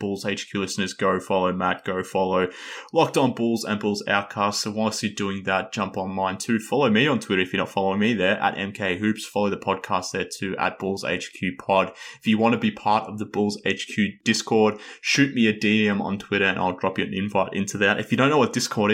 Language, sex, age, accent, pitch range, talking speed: English, male, 20-39, Australian, 100-115 Hz, 240 wpm